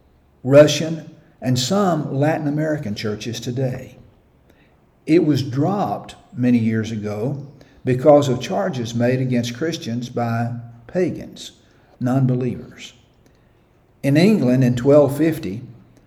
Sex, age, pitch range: male, 60-79, 115-145 Hz